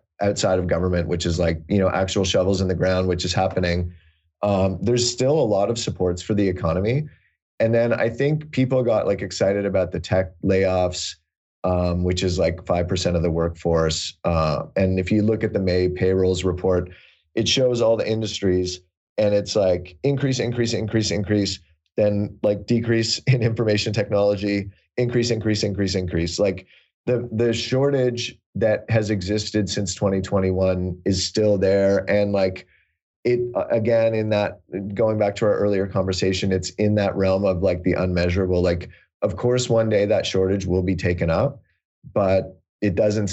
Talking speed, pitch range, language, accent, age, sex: 170 wpm, 90-110 Hz, English, American, 30-49, male